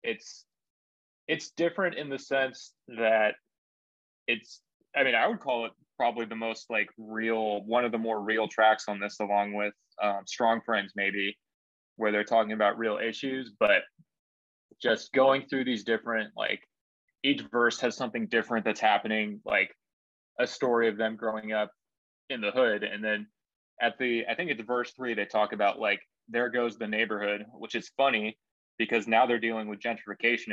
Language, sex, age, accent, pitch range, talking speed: English, male, 20-39, American, 105-130 Hz, 175 wpm